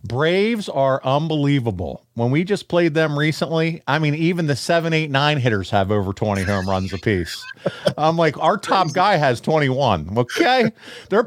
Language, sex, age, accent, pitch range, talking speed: English, male, 40-59, American, 115-165 Hz, 170 wpm